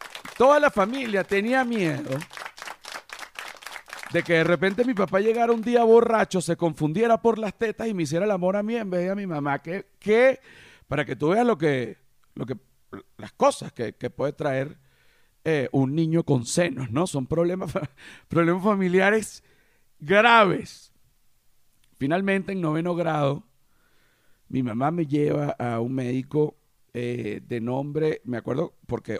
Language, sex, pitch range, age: Spanish, male, 130-185 Hz, 50-69